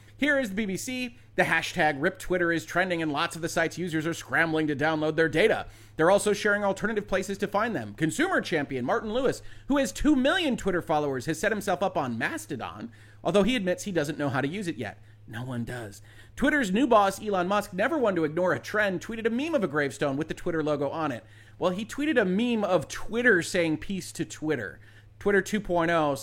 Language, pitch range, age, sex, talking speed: English, 145-210 Hz, 30-49, male, 220 wpm